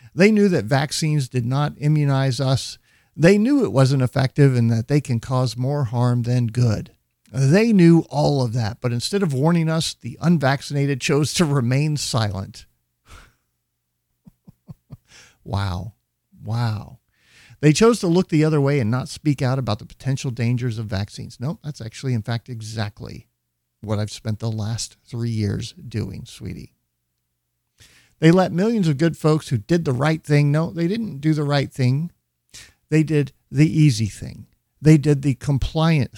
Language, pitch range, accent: English, 115-155 Hz, American